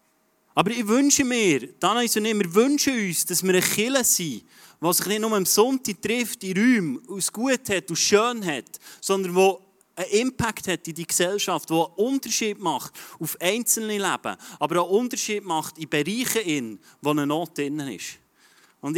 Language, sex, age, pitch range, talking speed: German, male, 30-49, 165-215 Hz, 195 wpm